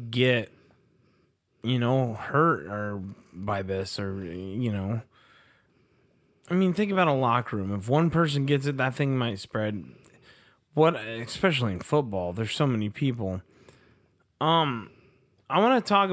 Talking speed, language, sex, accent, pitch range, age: 145 wpm, English, male, American, 105-140 Hz, 20-39